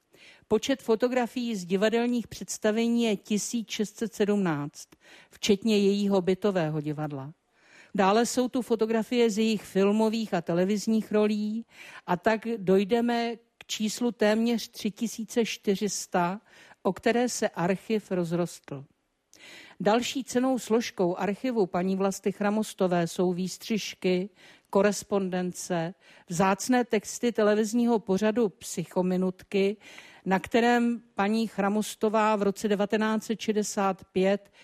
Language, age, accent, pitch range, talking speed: Czech, 50-69, native, 190-225 Hz, 95 wpm